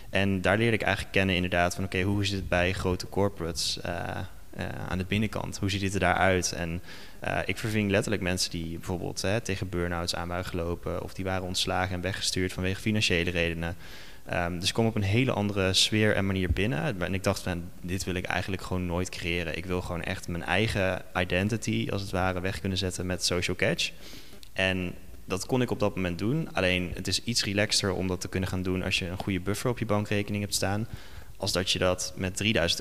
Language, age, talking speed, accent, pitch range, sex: Dutch, 20-39, 220 wpm, Dutch, 90-100 Hz, male